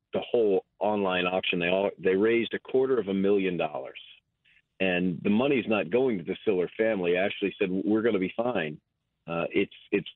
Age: 40-59